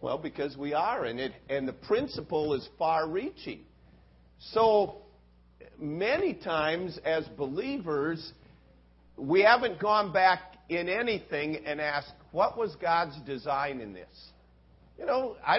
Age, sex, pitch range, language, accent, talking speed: 50-69, male, 120-185 Hz, English, American, 125 wpm